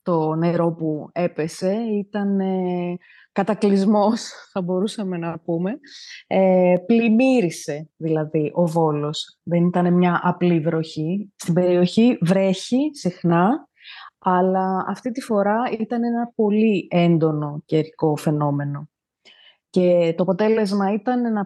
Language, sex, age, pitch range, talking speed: Greek, female, 20-39, 170-225 Hz, 110 wpm